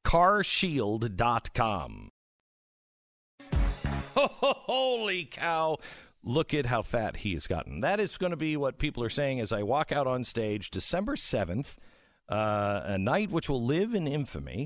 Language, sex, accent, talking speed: English, male, American, 145 wpm